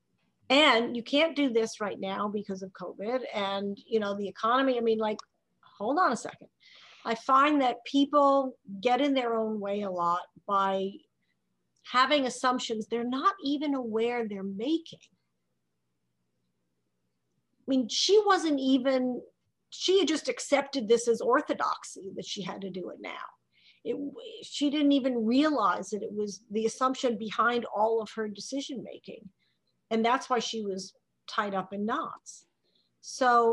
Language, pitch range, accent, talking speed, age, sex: English, 190-255 Hz, American, 155 wpm, 50-69, female